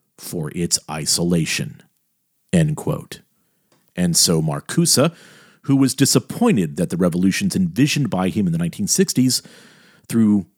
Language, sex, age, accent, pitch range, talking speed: English, male, 50-69, American, 110-175 Hz, 120 wpm